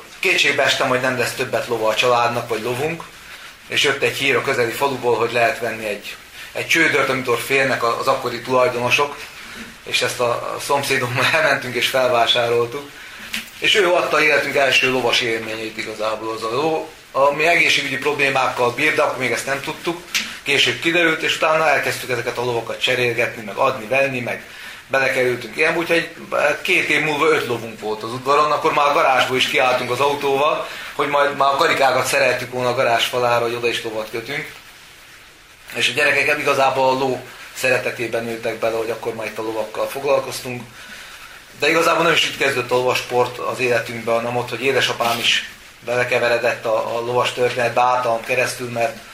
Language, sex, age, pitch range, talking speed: Hungarian, male, 30-49, 120-140 Hz, 175 wpm